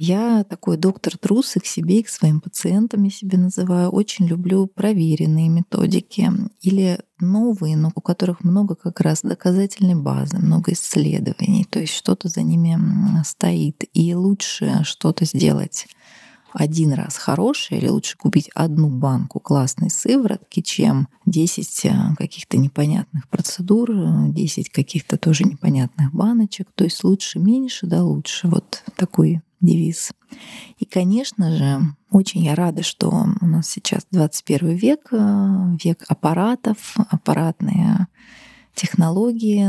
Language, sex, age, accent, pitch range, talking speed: Russian, female, 30-49, native, 165-205 Hz, 125 wpm